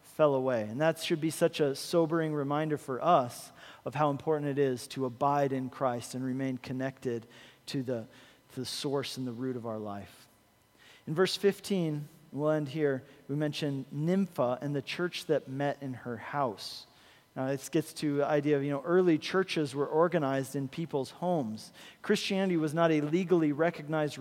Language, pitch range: English, 140-170 Hz